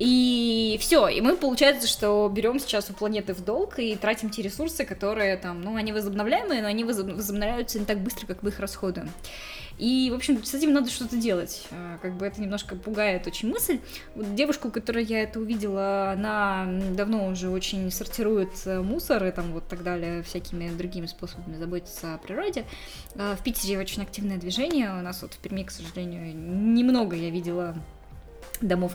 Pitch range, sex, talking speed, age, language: 185-225 Hz, female, 175 wpm, 10-29, Russian